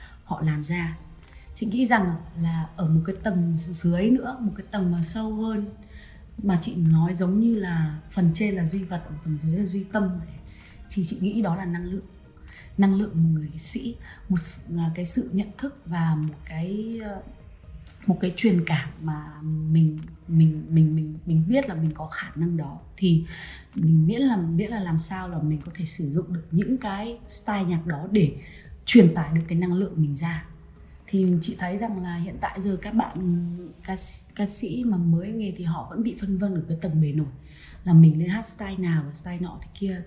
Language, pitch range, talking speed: Vietnamese, 160-195 Hz, 215 wpm